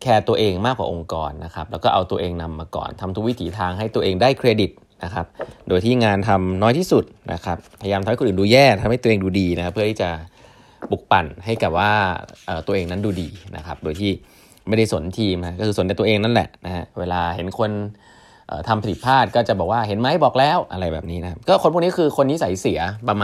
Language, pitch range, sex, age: Thai, 90-115 Hz, male, 20-39